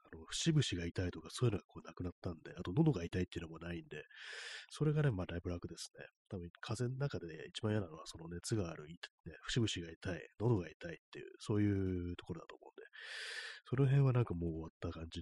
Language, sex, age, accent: Japanese, male, 30-49, native